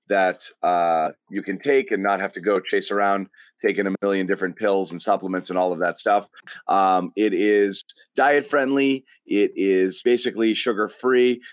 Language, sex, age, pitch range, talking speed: English, male, 30-49, 95-125 Hz, 175 wpm